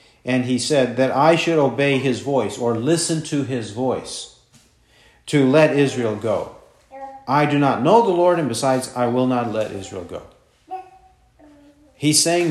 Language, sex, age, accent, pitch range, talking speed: English, male, 50-69, American, 125-165 Hz, 165 wpm